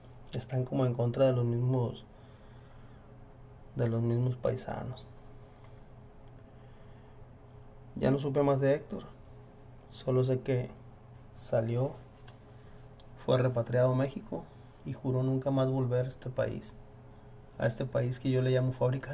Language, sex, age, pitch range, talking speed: Spanish, male, 30-49, 120-135 Hz, 130 wpm